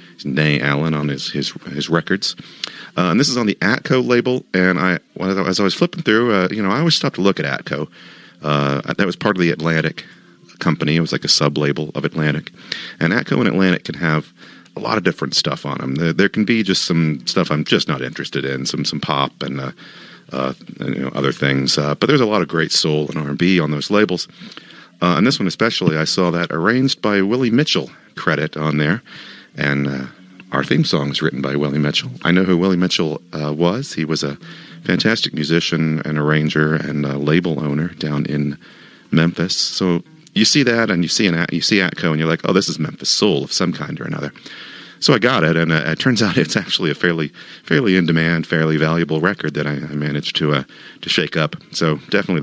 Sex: male